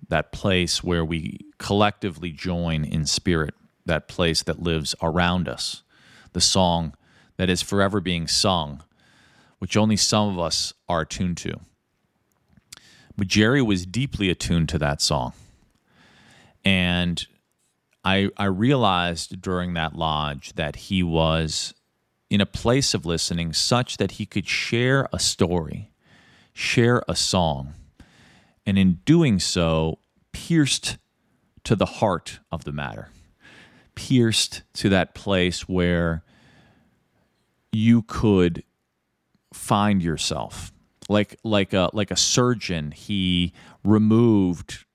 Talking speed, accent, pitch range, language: 120 wpm, American, 85-105 Hz, English